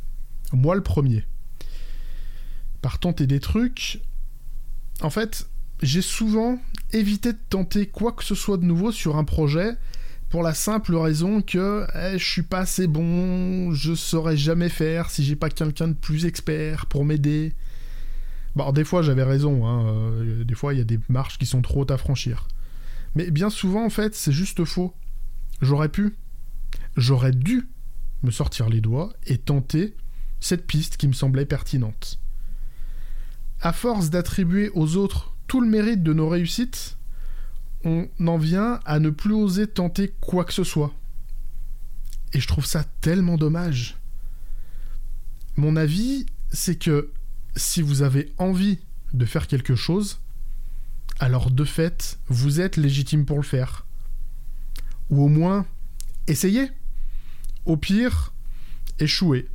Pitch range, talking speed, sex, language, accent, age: 135-185 Hz, 150 wpm, male, French, French, 20-39